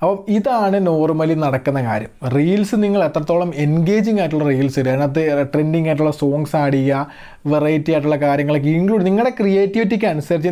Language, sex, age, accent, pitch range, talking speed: Malayalam, male, 20-39, native, 150-185 Hz, 135 wpm